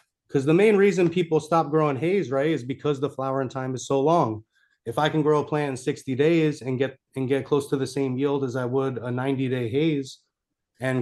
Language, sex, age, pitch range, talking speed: English, male, 30-49, 120-140 Hz, 230 wpm